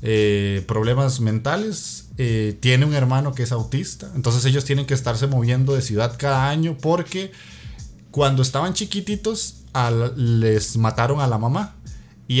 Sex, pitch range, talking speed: male, 115-145 Hz, 145 wpm